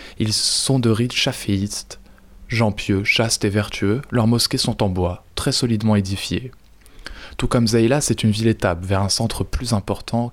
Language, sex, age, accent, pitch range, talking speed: French, male, 20-39, French, 100-125 Hz, 170 wpm